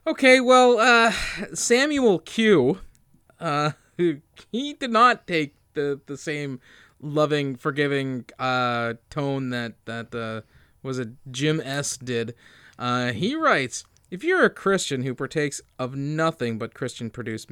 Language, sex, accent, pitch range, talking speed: English, male, American, 130-195 Hz, 130 wpm